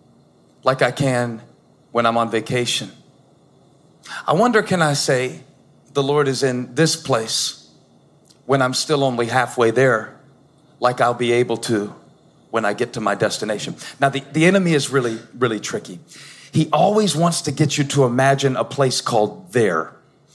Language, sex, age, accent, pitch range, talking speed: English, male, 40-59, American, 135-165 Hz, 160 wpm